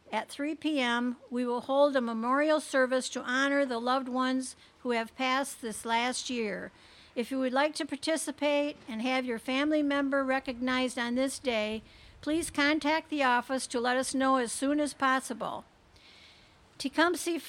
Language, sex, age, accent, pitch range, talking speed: English, female, 60-79, American, 245-285 Hz, 165 wpm